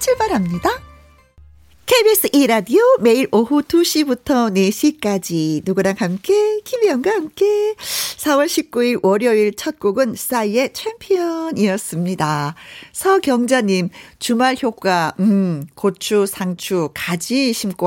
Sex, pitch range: female, 185-280 Hz